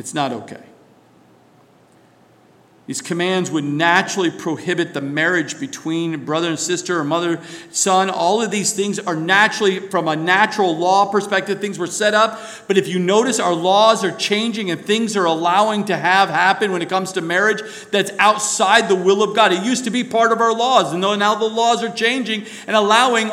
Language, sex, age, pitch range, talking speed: English, male, 50-69, 195-235 Hz, 195 wpm